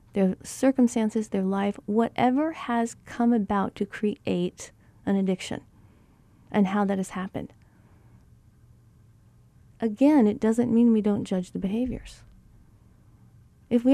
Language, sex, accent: English, female, American